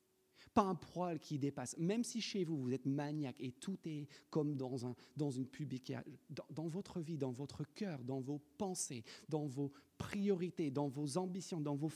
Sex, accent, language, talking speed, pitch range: male, French, French, 195 wpm, 130-165 Hz